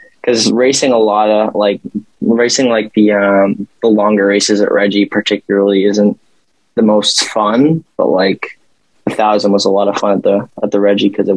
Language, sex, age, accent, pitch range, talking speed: English, male, 20-39, American, 100-105 Hz, 190 wpm